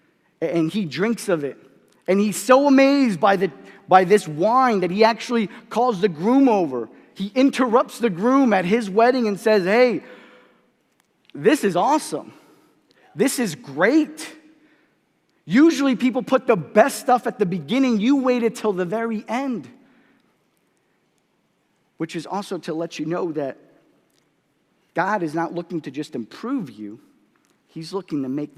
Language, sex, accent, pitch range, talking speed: English, male, American, 155-230 Hz, 150 wpm